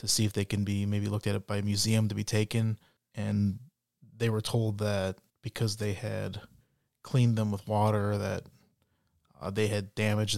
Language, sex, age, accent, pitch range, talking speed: English, male, 20-39, American, 100-115 Hz, 190 wpm